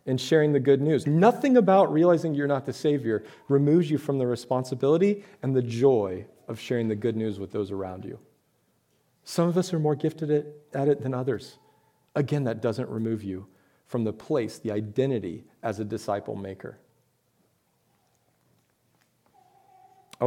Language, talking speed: English, 160 wpm